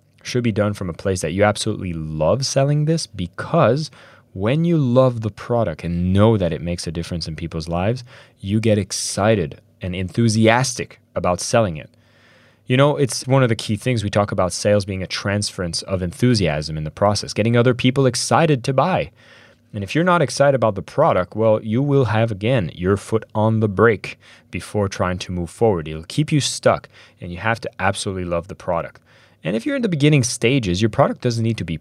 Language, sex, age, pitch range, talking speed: English, male, 20-39, 95-120 Hz, 210 wpm